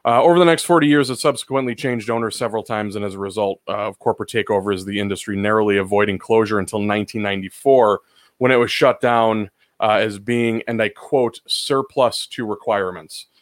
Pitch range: 110-130 Hz